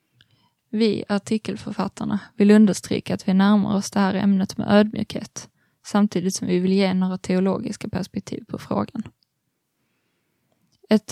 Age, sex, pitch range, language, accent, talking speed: 20-39, female, 190-210 Hz, Swedish, native, 130 wpm